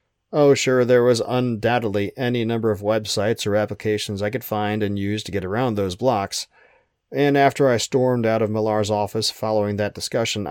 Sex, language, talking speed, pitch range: male, English, 185 wpm, 105-125 Hz